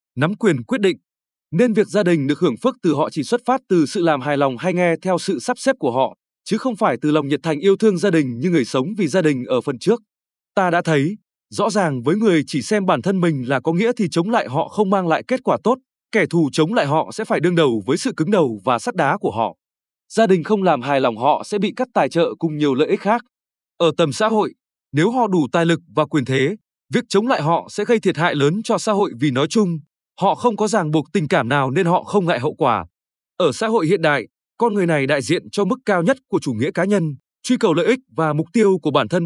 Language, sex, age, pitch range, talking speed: Vietnamese, male, 20-39, 150-210 Hz, 275 wpm